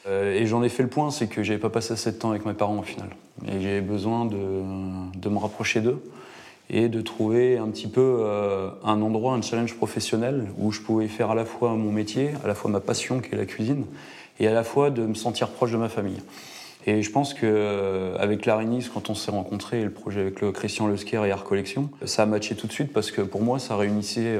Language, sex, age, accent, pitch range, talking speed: French, male, 20-39, French, 100-115 Hz, 245 wpm